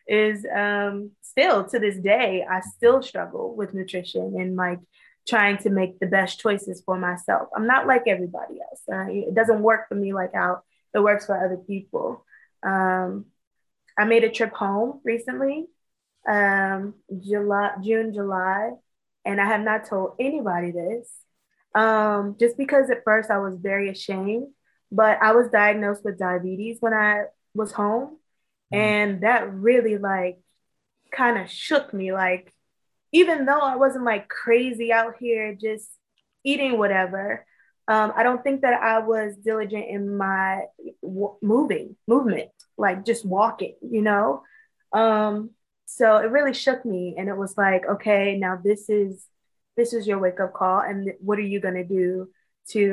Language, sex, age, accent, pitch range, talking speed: English, female, 20-39, American, 195-230 Hz, 160 wpm